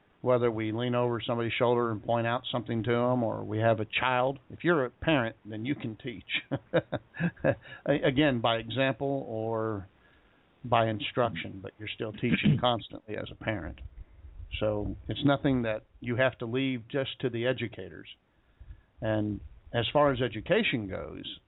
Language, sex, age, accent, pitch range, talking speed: English, male, 50-69, American, 110-140 Hz, 160 wpm